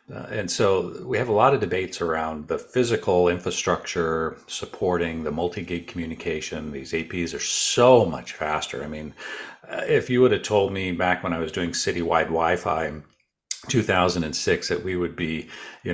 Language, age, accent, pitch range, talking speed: English, 50-69, American, 80-115 Hz, 175 wpm